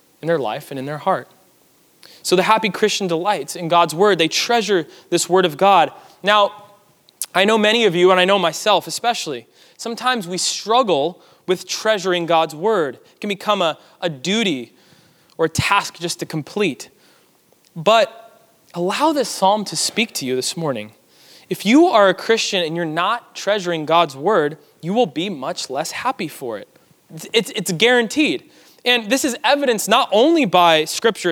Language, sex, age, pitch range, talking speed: English, male, 20-39, 165-220 Hz, 170 wpm